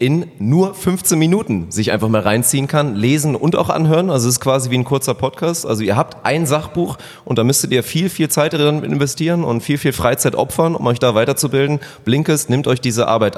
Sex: male